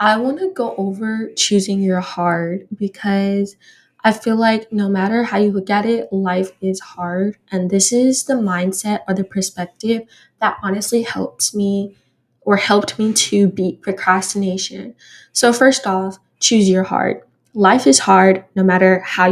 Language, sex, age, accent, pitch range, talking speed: English, female, 20-39, American, 185-215 Hz, 160 wpm